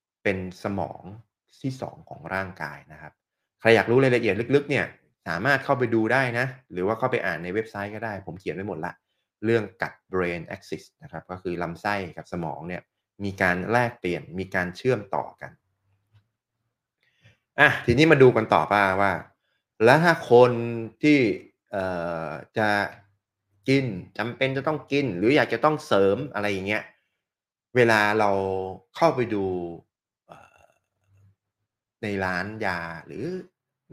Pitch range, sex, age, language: 95-125 Hz, male, 20-39, Thai